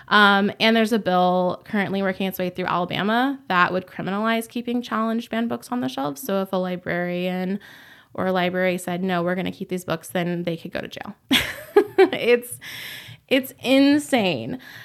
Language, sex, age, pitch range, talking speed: English, female, 20-39, 180-225 Hz, 180 wpm